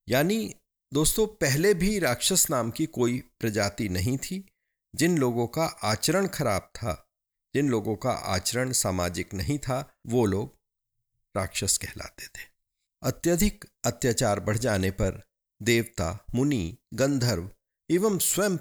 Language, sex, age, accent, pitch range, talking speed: Hindi, male, 50-69, native, 100-140 Hz, 125 wpm